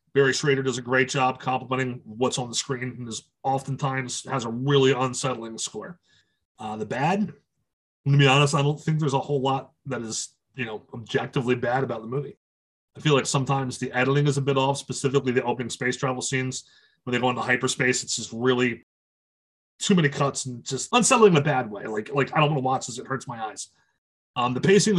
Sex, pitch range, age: male, 125-140 Hz, 30-49